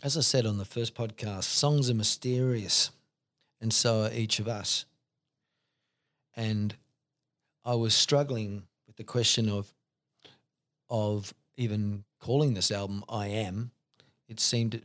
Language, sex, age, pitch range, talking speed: English, male, 40-59, 110-140 Hz, 135 wpm